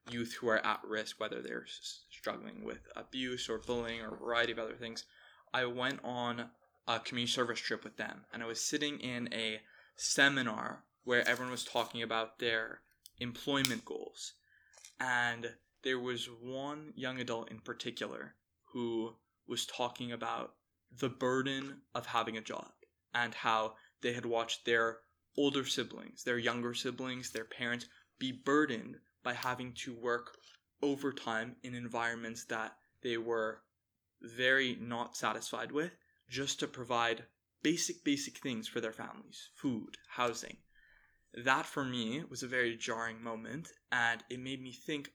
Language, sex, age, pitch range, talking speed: English, male, 10-29, 115-130 Hz, 150 wpm